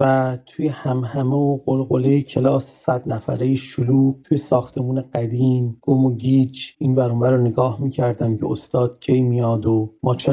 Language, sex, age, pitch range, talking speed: Persian, male, 40-59, 120-145 Hz, 165 wpm